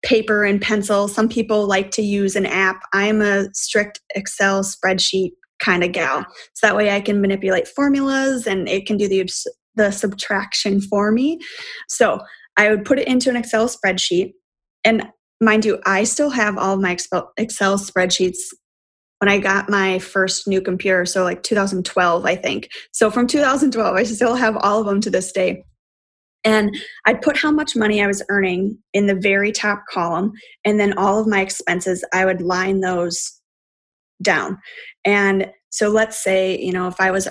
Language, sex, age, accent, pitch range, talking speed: English, female, 20-39, American, 185-215 Hz, 180 wpm